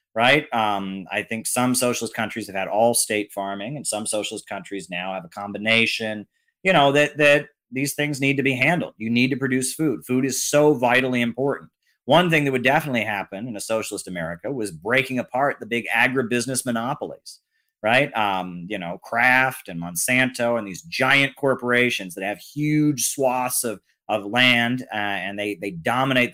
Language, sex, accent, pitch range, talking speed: English, male, American, 110-135 Hz, 180 wpm